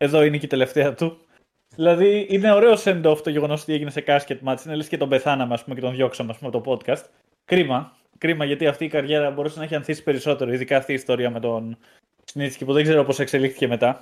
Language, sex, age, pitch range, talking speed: Greek, male, 20-39, 140-200 Hz, 225 wpm